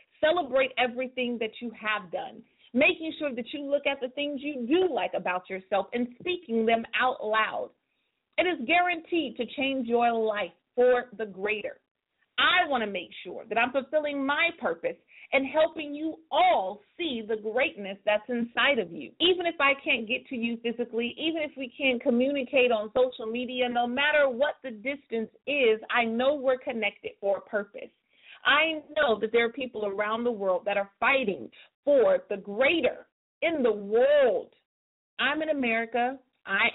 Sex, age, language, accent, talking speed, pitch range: female, 40-59, English, American, 175 wpm, 220-285 Hz